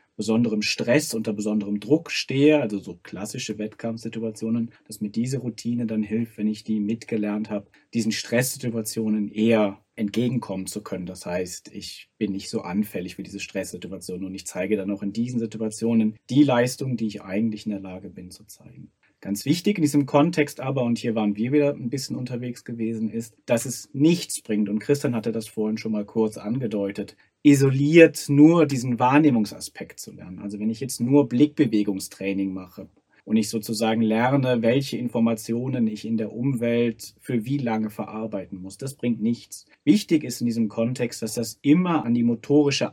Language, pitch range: German, 110-135 Hz